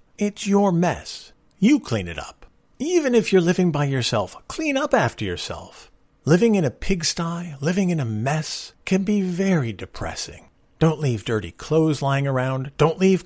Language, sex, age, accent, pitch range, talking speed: English, male, 50-69, American, 115-170 Hz, 165 wpm